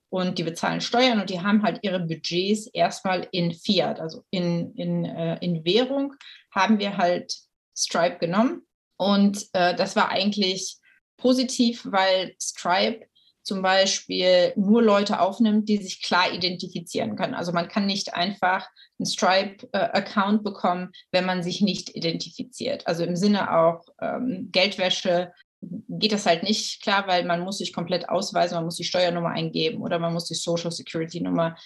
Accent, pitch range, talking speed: German, 170-215 Hz, 160 wpm